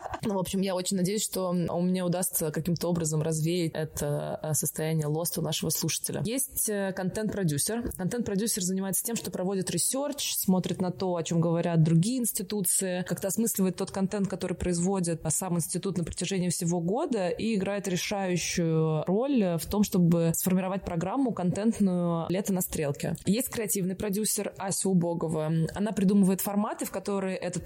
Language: Russian